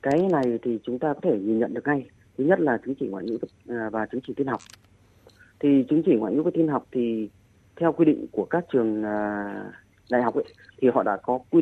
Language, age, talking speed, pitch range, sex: Vietnamese, 30-49, 240 wpm, 105-140 Hz, female